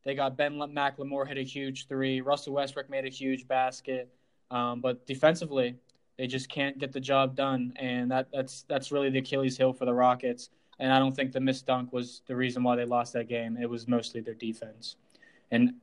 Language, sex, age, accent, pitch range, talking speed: English, male, 20-39, American, 130-145 Hz, 210 wpm